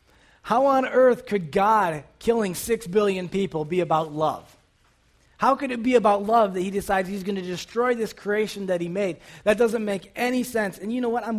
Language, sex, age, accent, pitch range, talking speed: English, male, 20-39, American, 165-225 Hz, 210 wpm